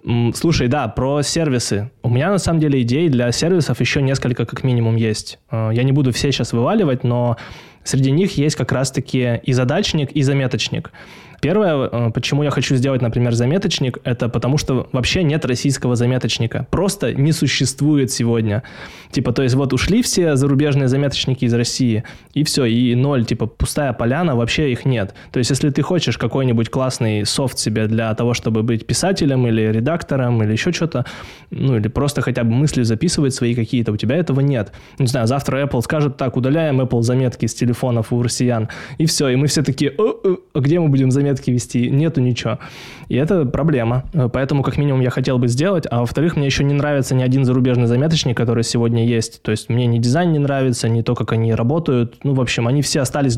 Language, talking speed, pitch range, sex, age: Russian, 190 wpm, 120-140 Hz, male, 20-39